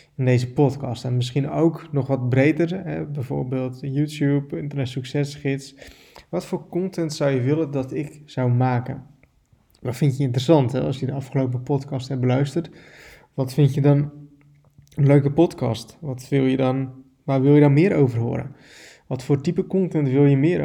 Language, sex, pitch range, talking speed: Dutch, male, 130-145 Hz, 175 wpm